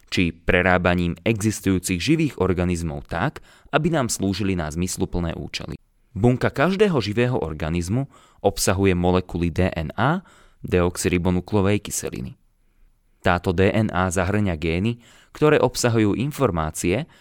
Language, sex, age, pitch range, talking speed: Slovak, male, 30-49, 90-110 Hz, 100 wpm